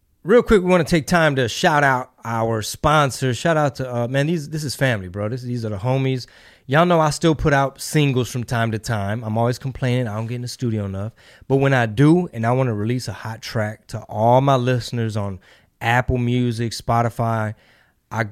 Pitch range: 115-140 Hz